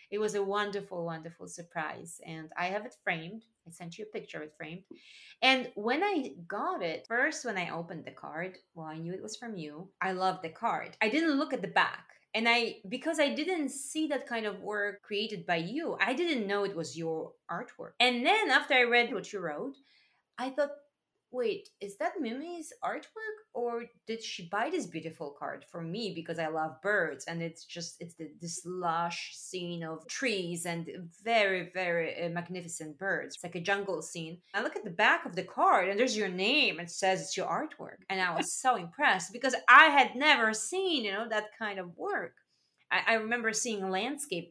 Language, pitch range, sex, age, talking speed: English, 175-255 Hz, female, 30-49, 205 wpm